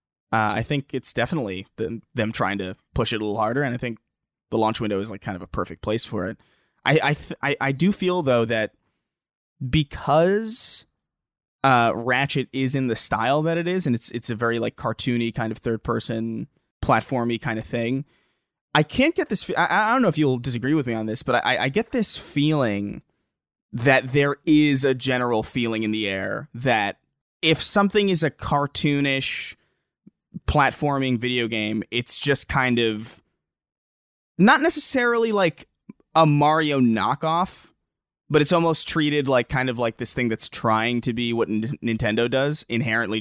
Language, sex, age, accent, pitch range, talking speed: English, male, 20-39, American, 110-140 Hz, 180 wpm